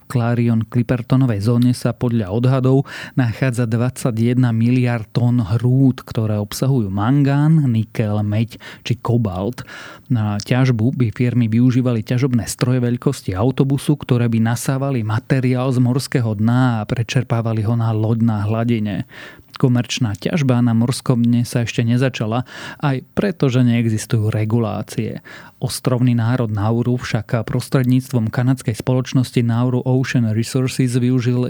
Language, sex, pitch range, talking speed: Slovak, male, 115-130 Hz, 120 wpm